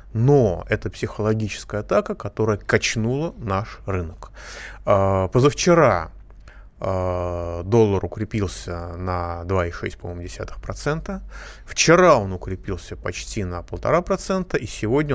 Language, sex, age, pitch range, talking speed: Russian, male, 30-49, 95-125 Hz, 95 wpm